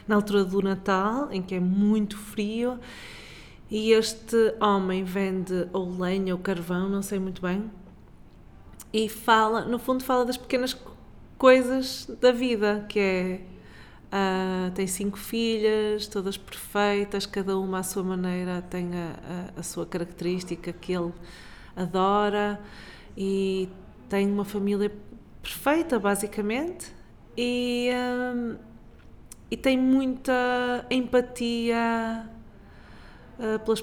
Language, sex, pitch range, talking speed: Portuguese, female, 190-225 Hz, 110 wpm